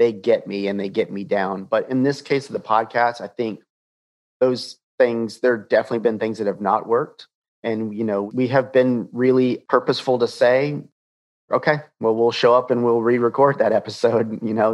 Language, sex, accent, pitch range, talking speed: English, male, American, 105-140 Hz, 210 wpm